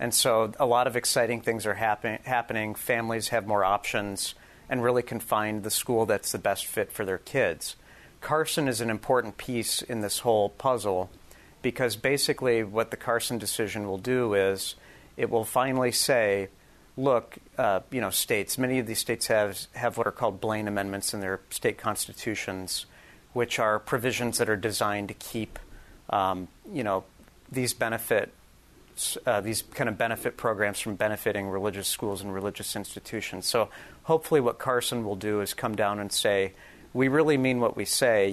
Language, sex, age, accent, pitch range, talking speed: English, male, 40-59, American, 100-120 Hz, 175 wpm